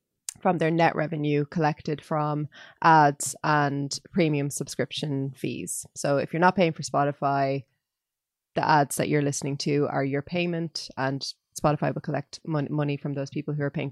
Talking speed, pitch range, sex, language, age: 165 wpm, 145-170 Hz, female, English, 20-39